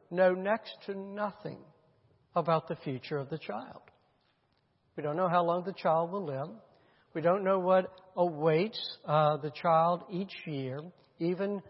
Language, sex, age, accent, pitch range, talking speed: English, male, 60-79, American, 150-200 Hz, 155 wpm